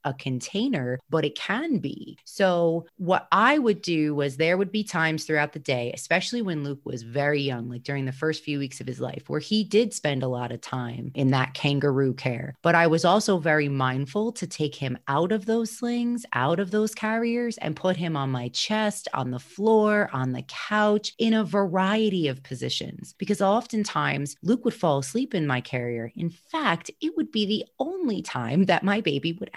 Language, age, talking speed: English, 30-49, 205 wpm